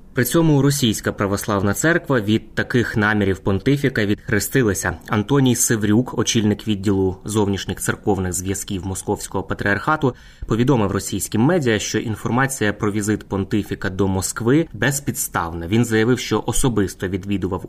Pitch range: 95-120 Hz